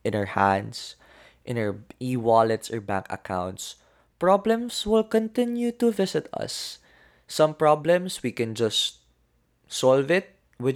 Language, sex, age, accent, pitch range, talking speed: Filipino, male, 20-39, native, 100-155 Hz, 130 wpm